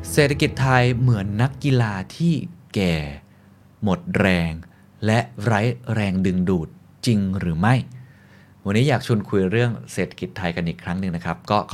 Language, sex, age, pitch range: Thai, male, 20-39, 90-120 Hz